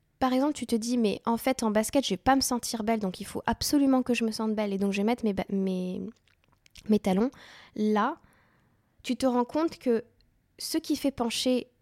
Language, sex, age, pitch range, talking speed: French, female, 10-29, 195-245 Hz, 235 wpm